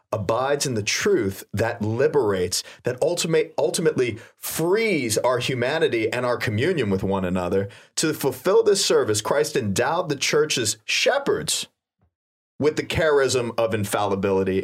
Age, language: 30-49, English